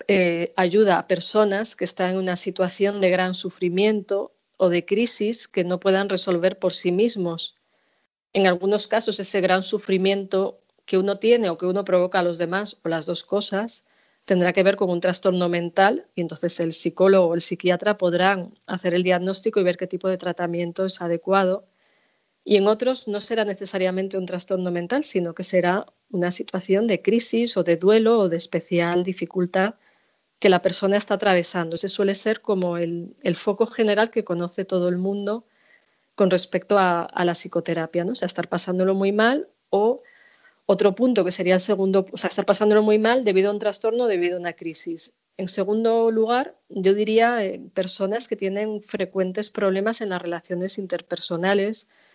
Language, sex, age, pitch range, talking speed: Spanish, female, 40-59, 180-210 Hz, 185 wpm